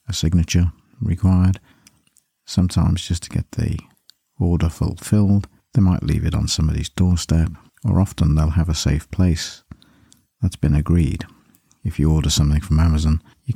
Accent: British